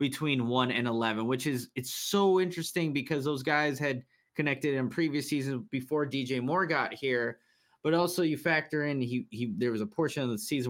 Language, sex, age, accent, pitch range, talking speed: English, male, 20-39, American, 120-150 Hz, 200 wpm